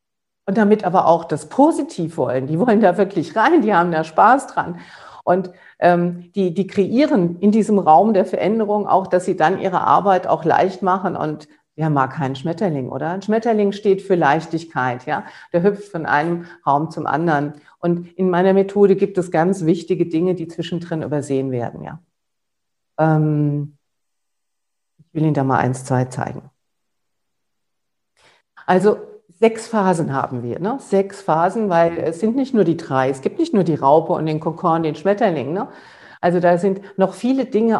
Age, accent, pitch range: 50-69, German, 155-195 Hz